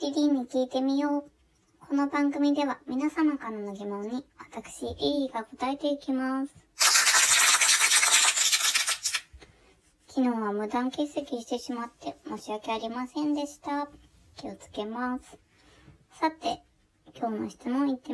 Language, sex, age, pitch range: Japanese, male, 20-39, 190-285 Hz